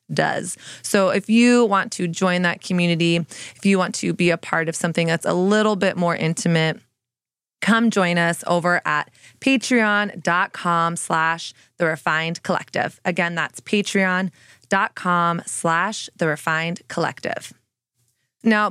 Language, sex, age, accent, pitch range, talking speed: English, female, 20-39, American, 165-205 Hz, 135 wpm